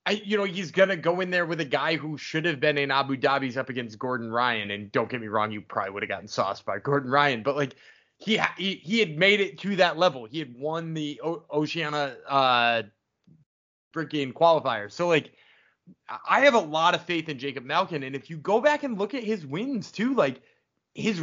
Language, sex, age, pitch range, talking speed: English, male, 20-39, 135-190 Hz, 230 wpm